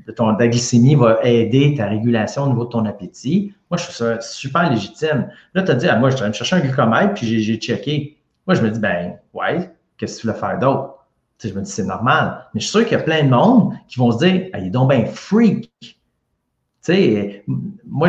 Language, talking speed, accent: French, 260 wpm, Canadian